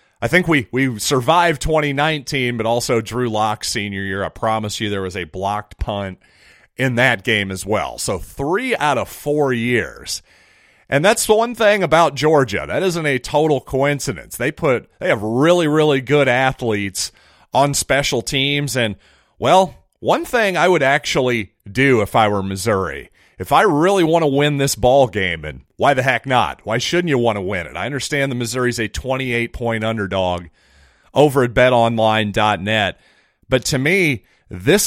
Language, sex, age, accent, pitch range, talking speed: English, male, 40-59, American, 110-145 Hz, 175 wpm